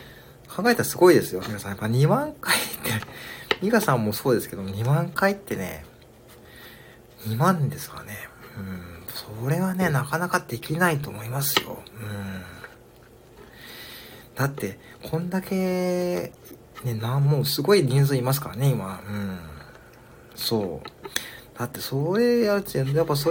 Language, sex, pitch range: Japanese, male, 100-140 Hz